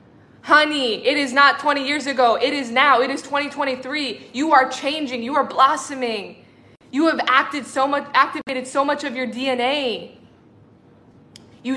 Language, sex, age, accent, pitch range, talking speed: English, female, 20-39, American, 235-265 Hz, 160 wpm